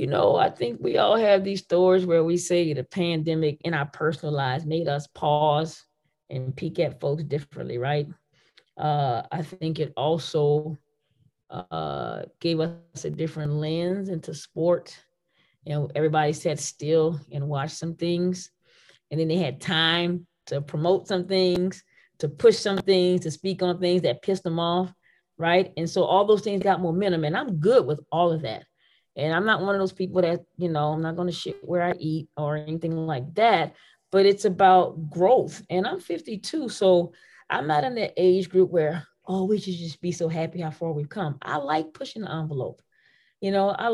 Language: English